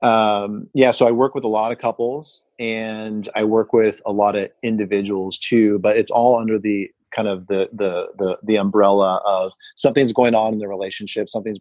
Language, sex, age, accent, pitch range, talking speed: English, male, 30-49, American, 100-120 Hz, 200 wpm